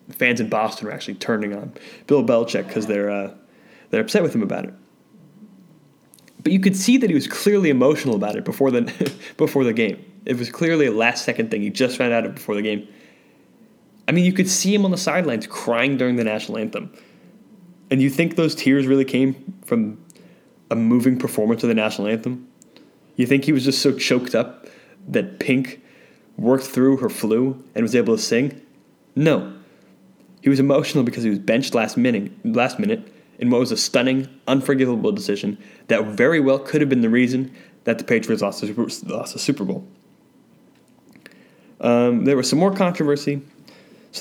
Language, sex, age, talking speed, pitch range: English, male, 20-39, 185 wpm, 115-180 Hz